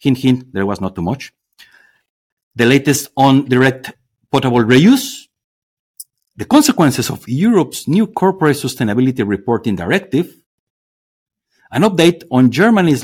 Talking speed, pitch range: 120 wpm, 105-155 Hz